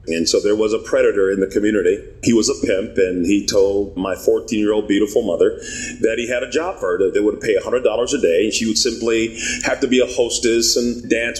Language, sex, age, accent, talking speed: English, male, 40-59, American, 245 wpm